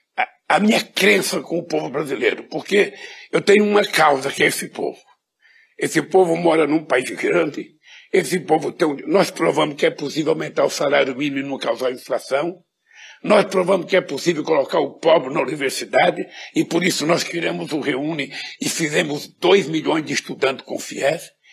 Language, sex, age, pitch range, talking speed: Portuguese, male, 60-79, 175-210 Hz, 180 wpm